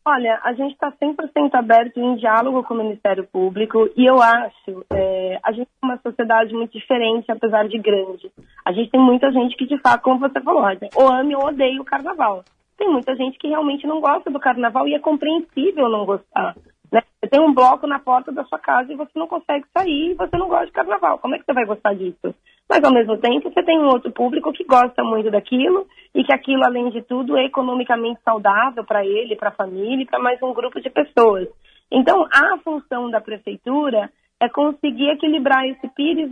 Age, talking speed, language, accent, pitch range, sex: 20-39, 215 wpm, Portuguese, Brazilian, 220-290 Hz, female